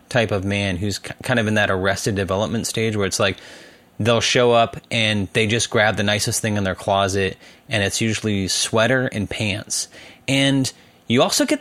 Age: 20-39